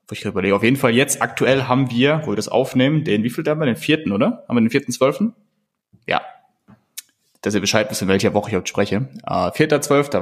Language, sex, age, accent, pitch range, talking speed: German, male, 20-39, German, 105-135 Hz, 235 wpm